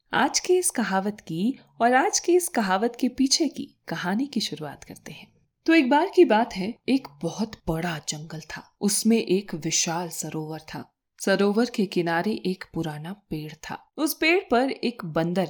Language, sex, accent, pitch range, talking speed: Hindi, female, native, 180-280 Hz, 180 wpm